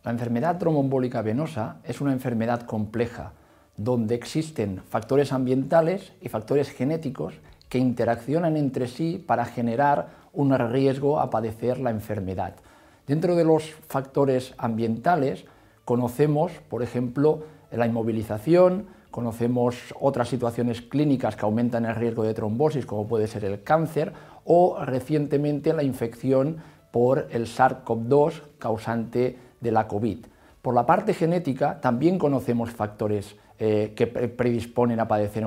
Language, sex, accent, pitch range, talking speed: English, male, Spanish, 115-150 Hz, 125 wpm